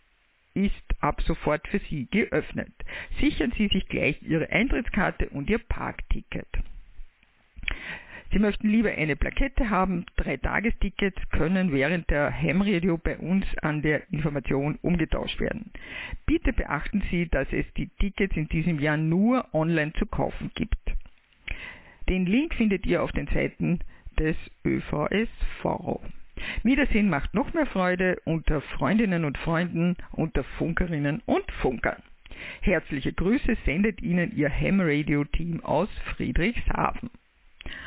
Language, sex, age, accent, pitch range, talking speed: German, female, 50-69, German, 155-205 Hz, 125 wpm